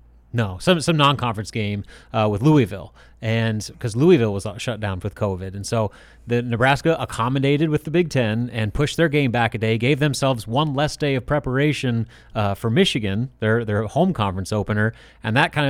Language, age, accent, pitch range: English, 30-49, American, 110-135 Hz